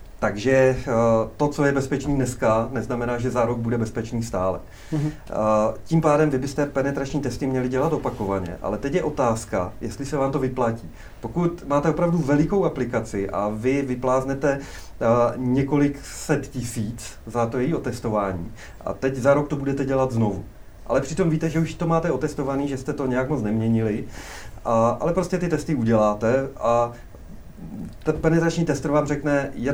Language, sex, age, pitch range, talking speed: Czech, male, 30-49, 110-145 Hz, 160 wpm